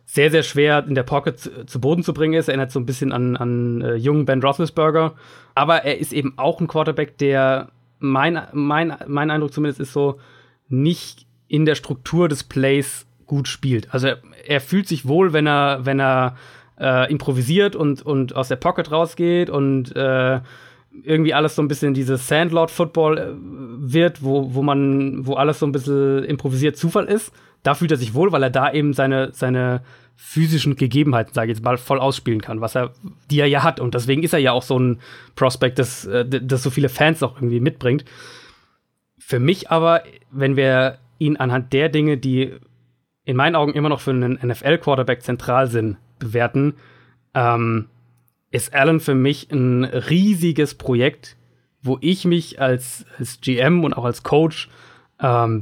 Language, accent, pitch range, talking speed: German, German, 125-150 Hz, 180 wpm